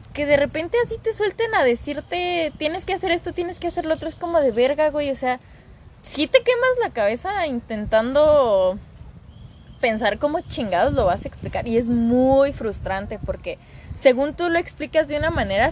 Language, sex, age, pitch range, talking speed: Spanish, female, 20-39, 205-300 Hz, 190 wpm